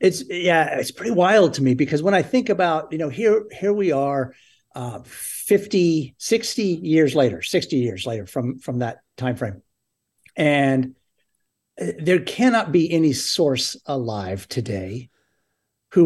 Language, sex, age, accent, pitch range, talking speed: English, male, 50-69, American, 125-160 Hz, 150 wpm